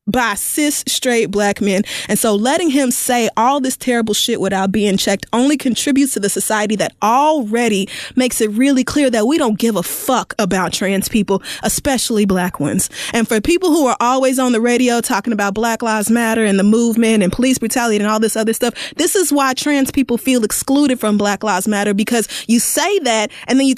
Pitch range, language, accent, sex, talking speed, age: 205-260 Hz, English, American, female, 210 wpm, 20-39